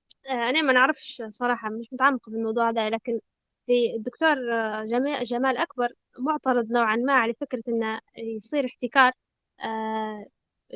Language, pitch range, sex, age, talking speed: Arabic, 230-295 Hz, female, 20-39, 130 wpm